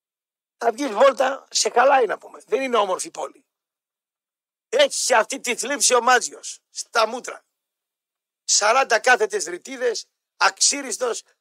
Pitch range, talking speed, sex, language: 200-265 Hz, 130 wpm, male, Greek